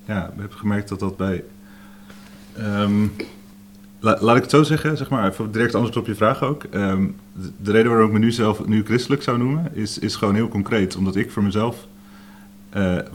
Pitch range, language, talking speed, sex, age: 95-105 Hz, Dutch, 205 wpm, male, 30-49